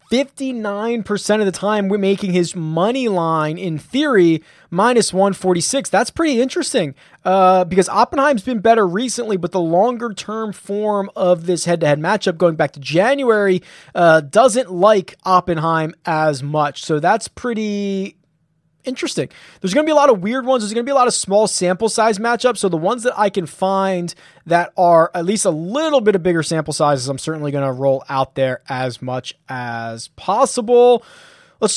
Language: English